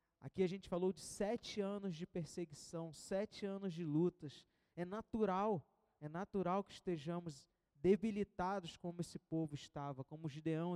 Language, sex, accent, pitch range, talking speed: Portuguese, male, Brazilian, 160-210 Hz, 150 wpm